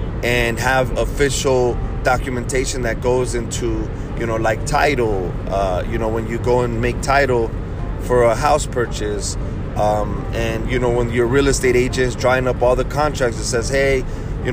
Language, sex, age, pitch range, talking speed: English, male, 30-49, 115-140 Hz, 180 wpm